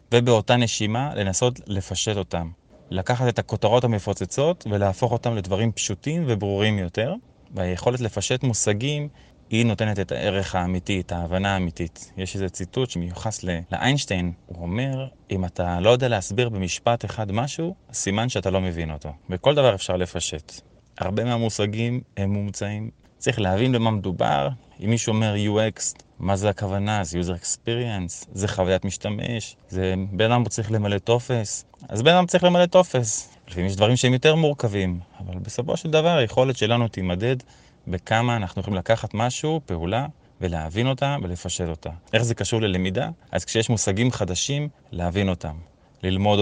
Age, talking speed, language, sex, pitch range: 20-39, 150 wpm, Hebrew, male, 95-120 Hz